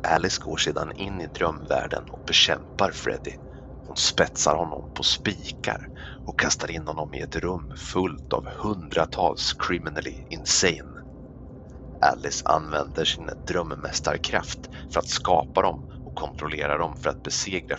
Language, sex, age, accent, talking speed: Swedish, male, 30-49, native, 135 wpm